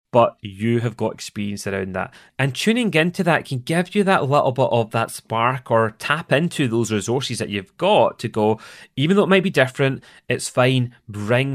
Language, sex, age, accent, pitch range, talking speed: English, male, 30-49, British, 110-140 Hz, 205 wpm